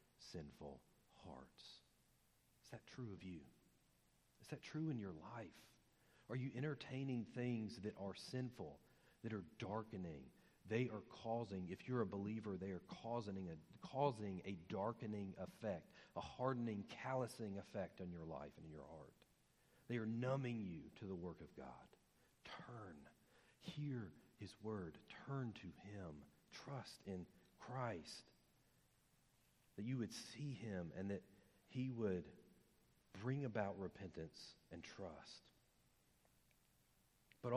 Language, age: English, 40-59